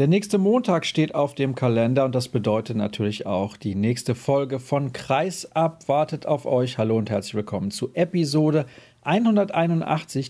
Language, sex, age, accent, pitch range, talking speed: German, male, 40-59, German, 120-145 Hz, 165 wpm